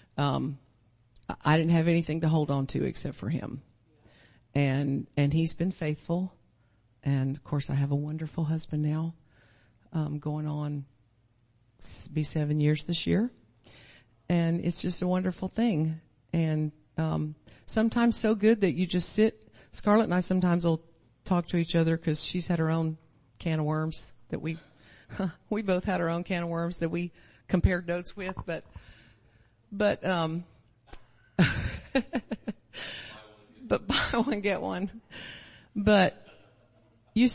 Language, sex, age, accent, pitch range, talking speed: English, female, 50-69, American, 135-185 Hz, 145 wpm